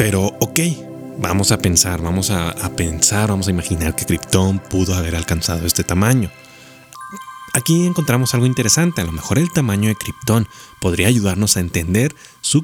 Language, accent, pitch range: Spanish, Mexican, 95-130 Hz